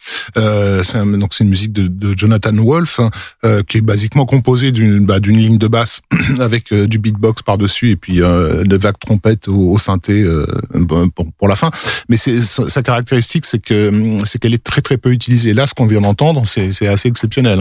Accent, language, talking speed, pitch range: French, French, 220 wpm, 105-125 Hz